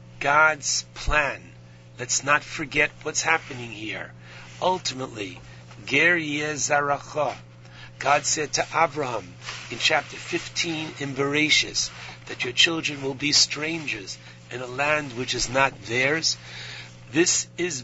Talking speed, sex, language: 115 wpm, male, English